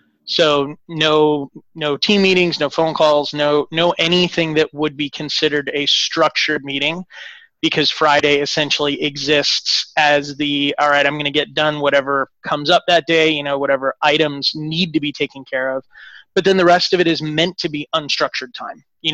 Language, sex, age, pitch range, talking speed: English, male, 30-49, 145-165 Hz, 185 wpm